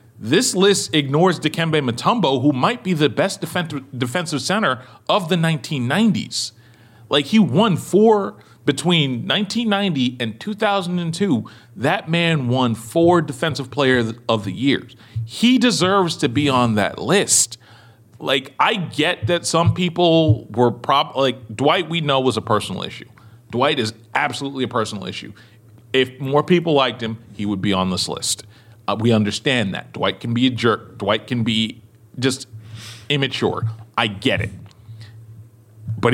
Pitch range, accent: 110-150 Hz, American